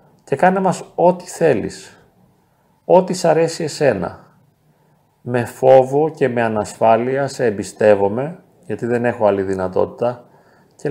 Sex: male